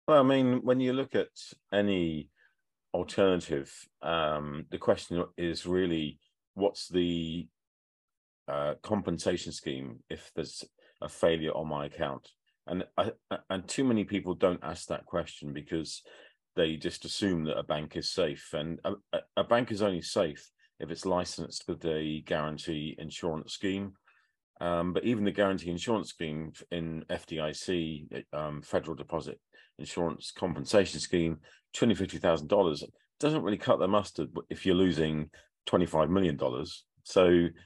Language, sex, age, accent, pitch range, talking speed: English, male, 40-59, British, 75-95 Hz, 140 wpm